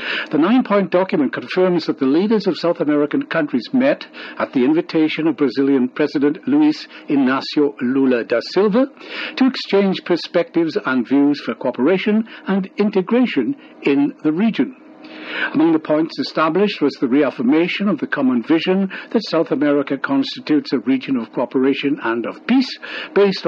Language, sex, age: English, male, 60-79